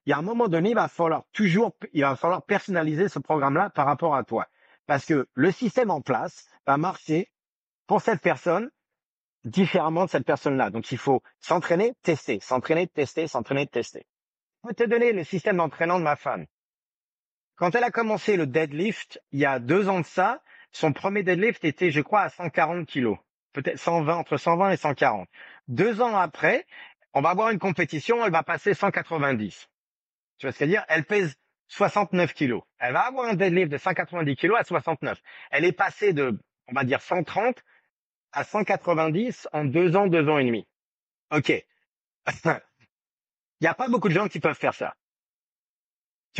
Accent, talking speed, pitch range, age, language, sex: French, 190 wpm, 150-200 Hz, 50-69, French, male